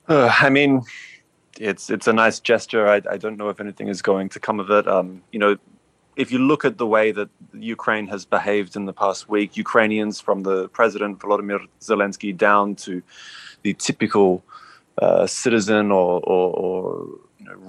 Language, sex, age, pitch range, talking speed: English, male, 20-39, 90-105 Hz, 185 wpm